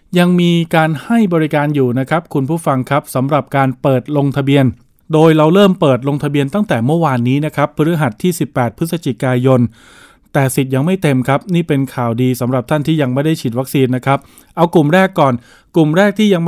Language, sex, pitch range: Thai, male, 130-165 Hz